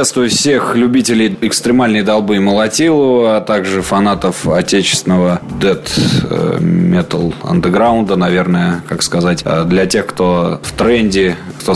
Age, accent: 20-39, native